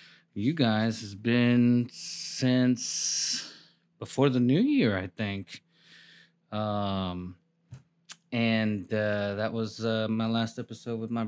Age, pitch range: 20-39, 105-135 Hz